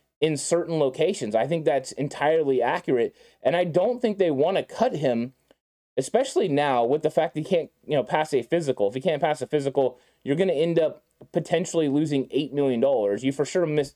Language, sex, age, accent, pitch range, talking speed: English, male, 20-39, American, 135-165 Hz, 215 wpm